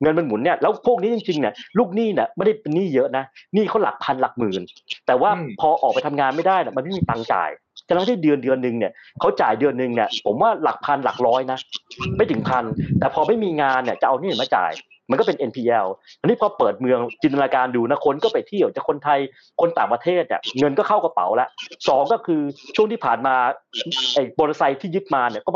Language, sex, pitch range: Thai, male, 130-195 Hz